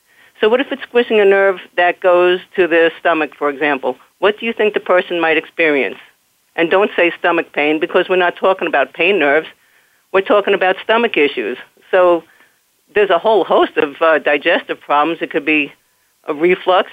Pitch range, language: 160-195 Hz, English